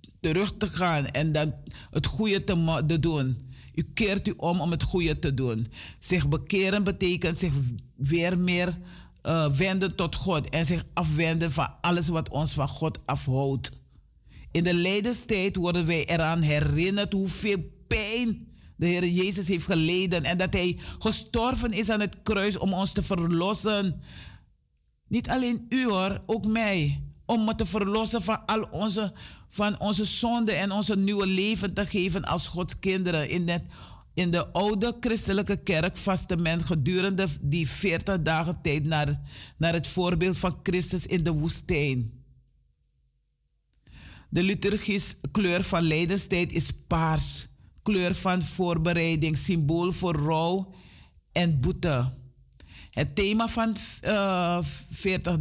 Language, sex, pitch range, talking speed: Dutch, male, 155-195 Hz, 140 wpm